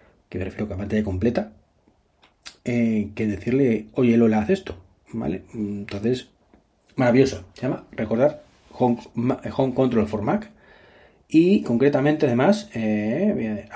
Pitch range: 105-145 Hz